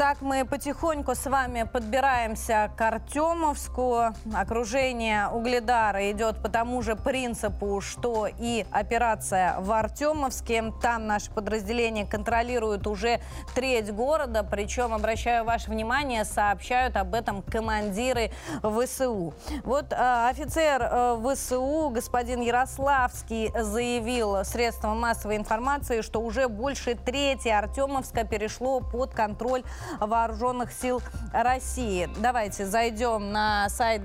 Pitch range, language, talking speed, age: 220-255 Hz, Russian, 105 wpm, 20-39